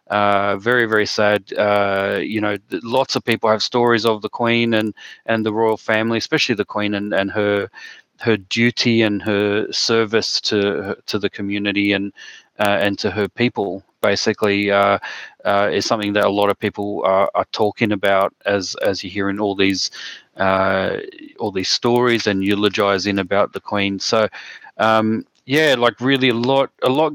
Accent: Australian